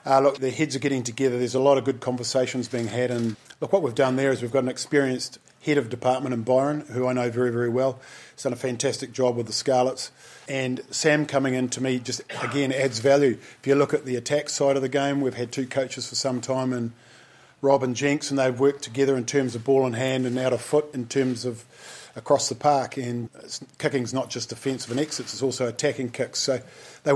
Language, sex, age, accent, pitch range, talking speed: English, male, 40-59, Australian, 125-140 Hz, 245 wpm